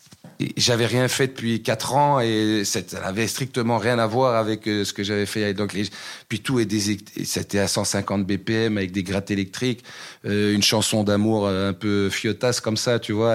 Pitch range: 105-125 Hz